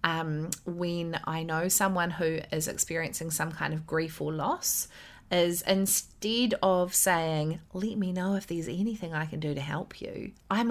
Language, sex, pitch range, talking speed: English, female, 160-220 Hz, 175 wpm